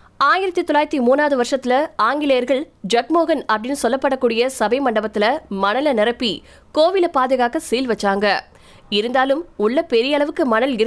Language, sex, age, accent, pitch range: Tamil, female, 20-39, native, 230-290 Hz